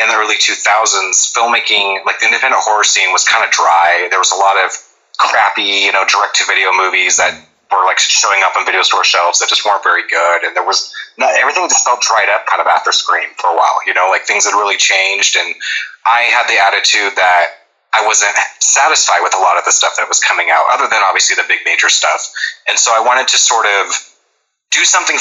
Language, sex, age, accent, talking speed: English, male, 30-49, American, 230 wpm